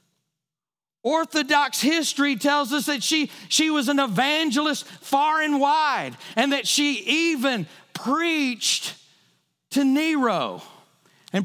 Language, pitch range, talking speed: English, 170-270 Hz, 110 wpm